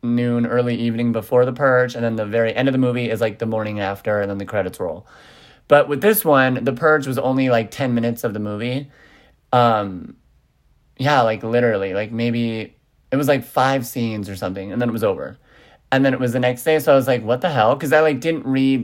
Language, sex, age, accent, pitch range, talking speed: English, male, 30-49, American, 115-145 Hz, 240 wpm